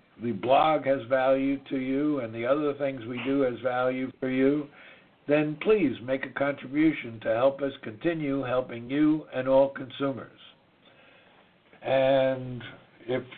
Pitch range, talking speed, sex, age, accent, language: 120-150 Hz, 145 wpm, male, 60-79, American, English